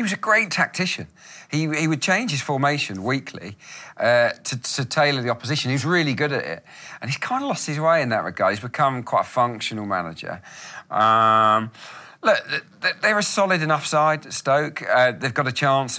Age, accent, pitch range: 40-59, British, 105-135 Hz